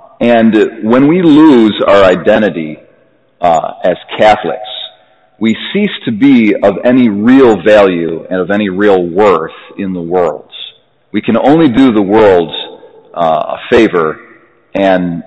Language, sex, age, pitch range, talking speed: English, male, 40-59, 90-120 Hz, 140 wpm